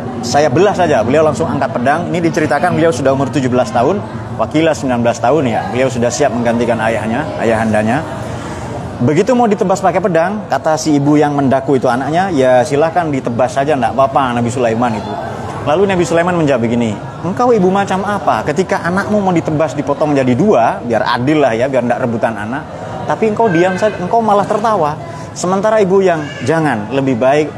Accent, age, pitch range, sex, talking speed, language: native, 30-49, 120-165 Hz, male, 180 wpm, Indonesian